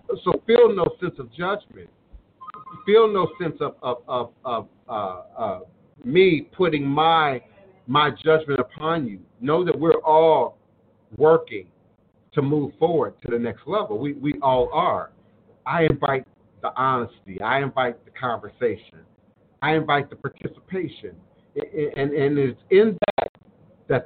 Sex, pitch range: male, 130-155 Hz